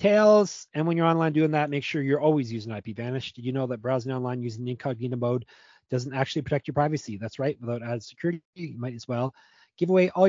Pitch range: 125-150 Hz